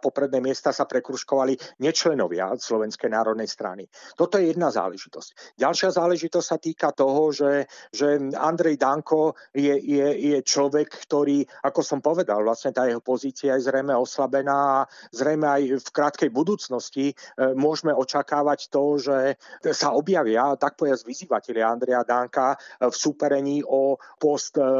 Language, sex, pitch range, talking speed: Slovak, male, 135-150 Hz, 145 wpm